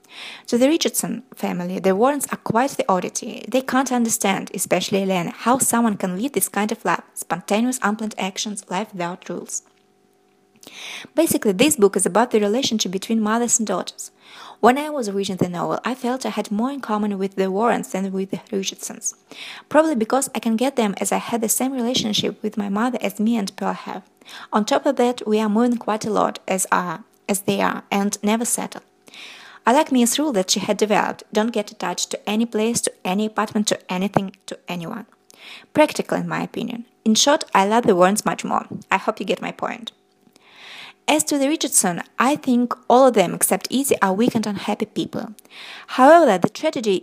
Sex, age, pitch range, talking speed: female, 20-39, 200-245 Hz, 200 wpm